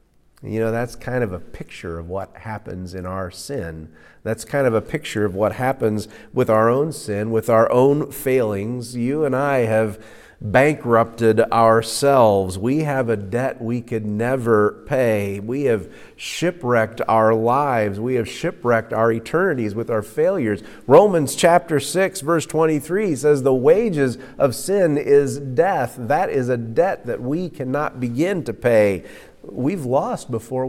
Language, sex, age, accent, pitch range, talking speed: English, male, 40-59, American, 105-130 Hz, 160 wpm